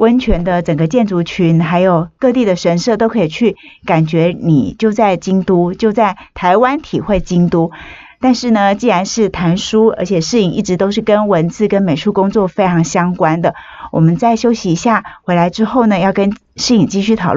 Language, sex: Chinese, female